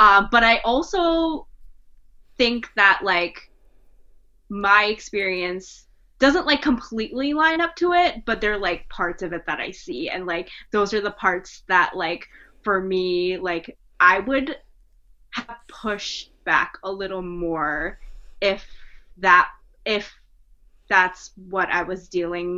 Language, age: English, 20-39